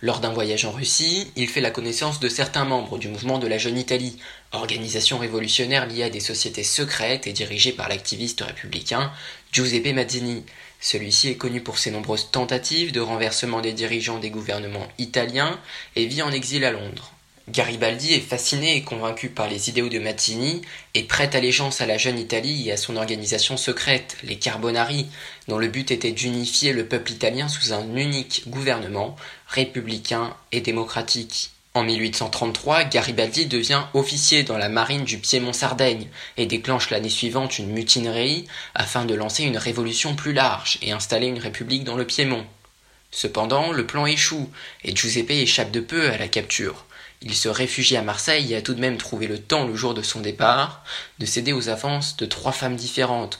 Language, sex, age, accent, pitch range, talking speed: French, male, 20-39, French, 110-130 Hz, 180 wpm